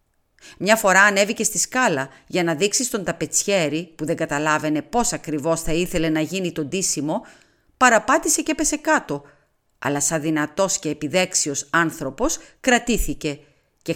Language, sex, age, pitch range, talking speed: Greek, female, 40-59, 155-230 Hz, 140 wpm